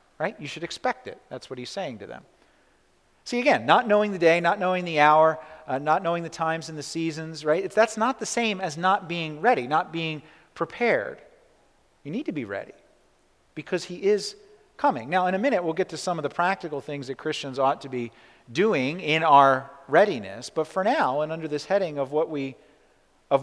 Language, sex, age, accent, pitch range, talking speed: English, male, 40-59, American, 130-185 Hz, 215 wpm